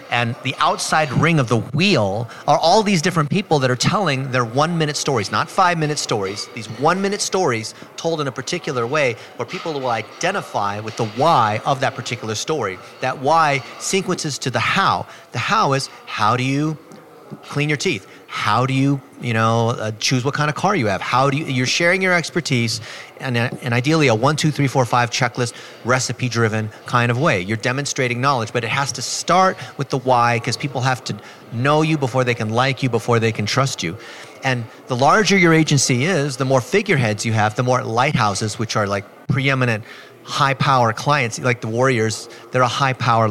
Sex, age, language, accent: male, 30-49, English, American